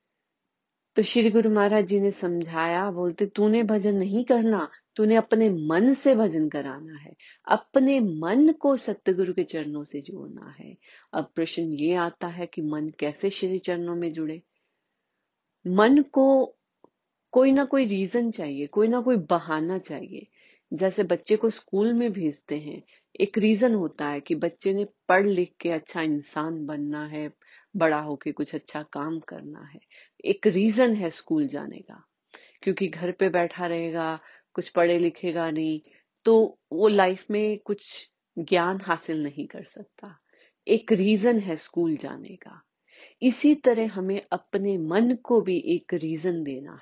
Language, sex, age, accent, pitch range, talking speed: Hindi, female, 30-49, native, 160-220 Hz, 155 wpm